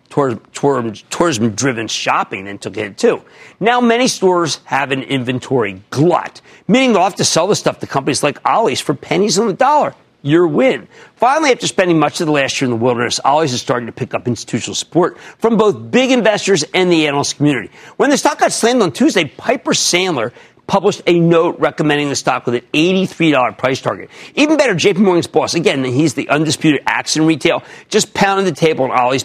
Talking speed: 195 wpm